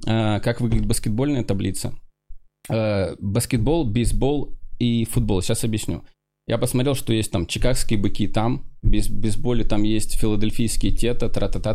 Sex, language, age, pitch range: male, Russian, 20-39, 105-140 Hz